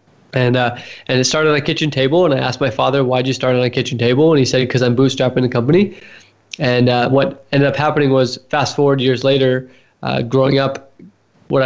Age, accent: 20-39, American